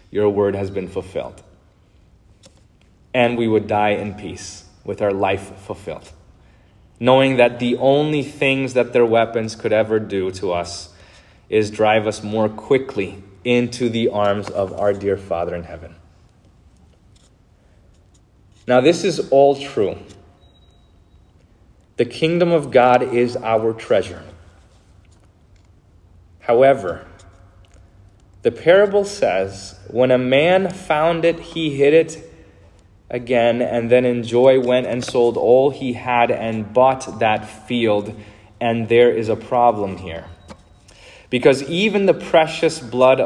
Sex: male